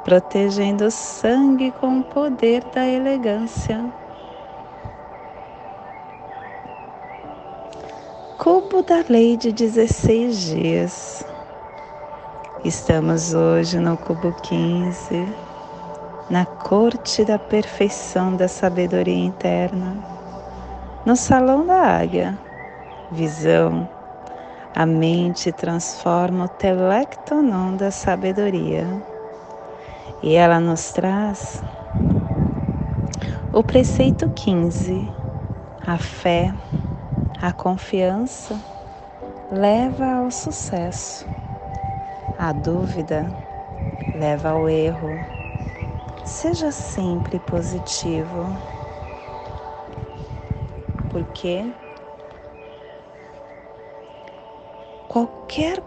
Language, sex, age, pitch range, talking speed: Portuguese, female, 30-49, 155-220 Hz, 65 wpm